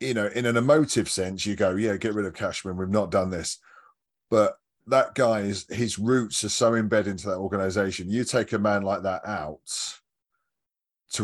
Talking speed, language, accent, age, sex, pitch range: 190 wpm, English, British, 30-49, male, 95-110 Hz